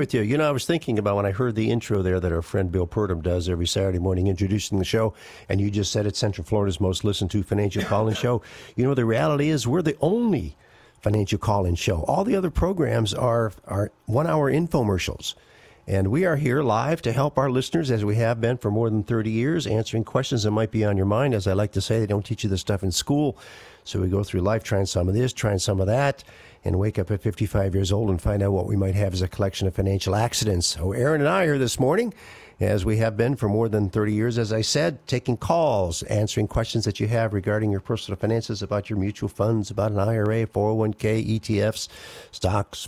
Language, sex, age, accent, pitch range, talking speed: English, male, 50-69, American, 100-120 Hz, 245 wpm